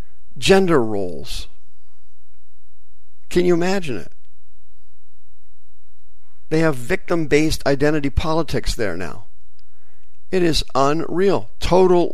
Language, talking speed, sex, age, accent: English, 90 wpm, male, 50-69, American